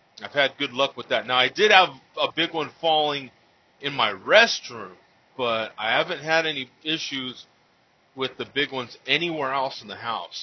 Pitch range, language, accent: 110-145 Hz, English, American